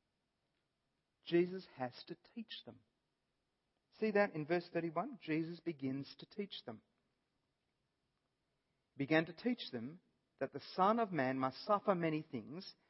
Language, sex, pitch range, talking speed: English, male, 135-200 Hz, 130 wpm